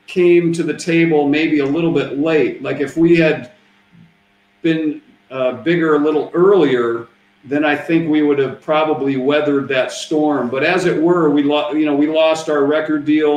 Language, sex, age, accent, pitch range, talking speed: Spanish, male, 50-69, American, 135-155 Hz, 190 wpm